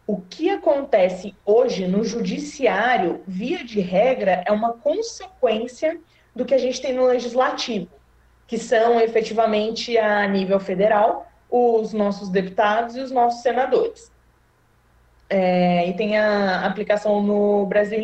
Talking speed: 125 wpm